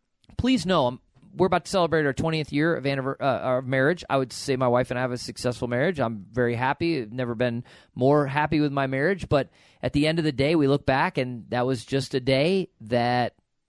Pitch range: 120-160 Hz